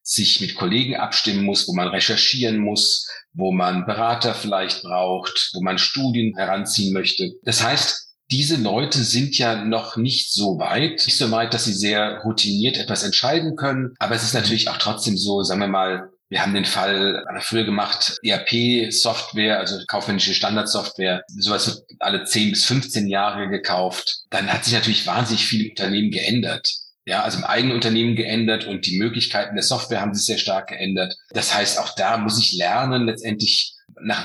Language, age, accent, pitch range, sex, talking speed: German, 40-59, German, 100-120 Hz, male, 175 wpm